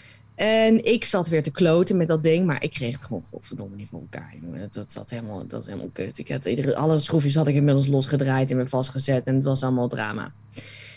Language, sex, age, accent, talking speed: Dutch, female, 20-39, Dutch, 230 wpm